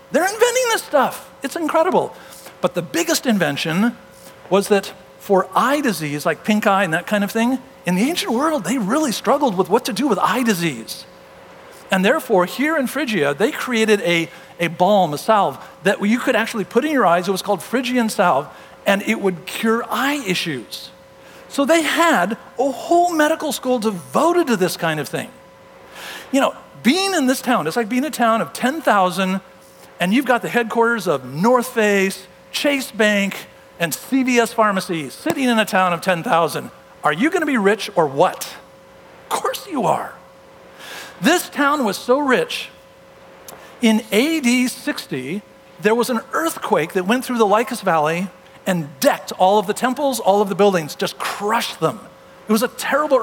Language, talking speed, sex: English, 180 wpm, male